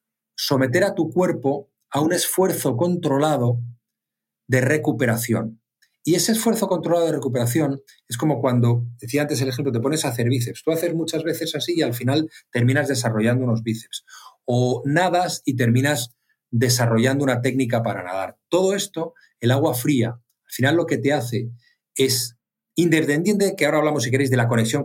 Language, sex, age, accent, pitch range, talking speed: Spanish, male, 40-59, Spanish, 120-150 Hz, 170 wpm